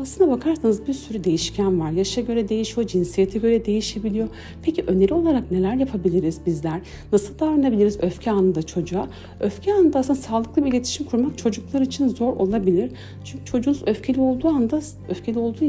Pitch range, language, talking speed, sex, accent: 185-265 Hz, Turkish, 155 wpm, female, native